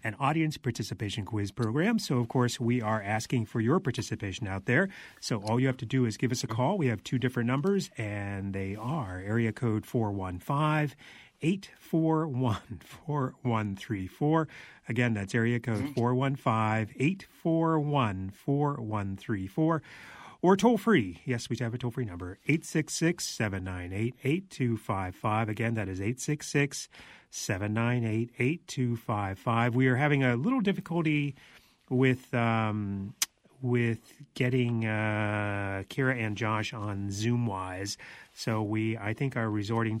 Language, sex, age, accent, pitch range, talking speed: English, male, 30-49, American, 110-140 Hz, 130 wpm